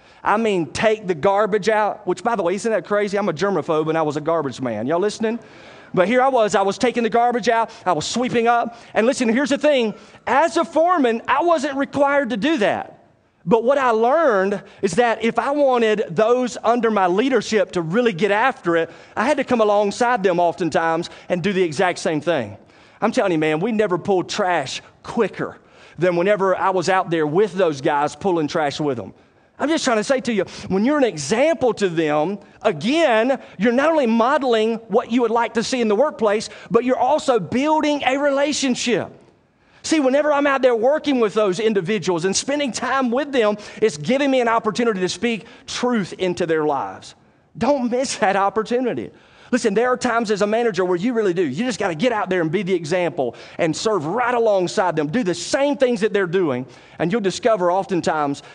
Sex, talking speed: male, 210 wpm